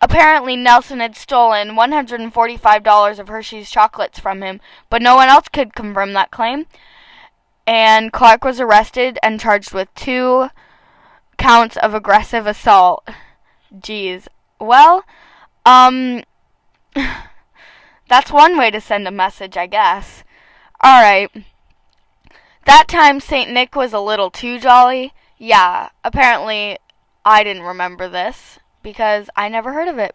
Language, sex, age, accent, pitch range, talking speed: English, female, 10-29, American, 210-255 Hz, 130 wpm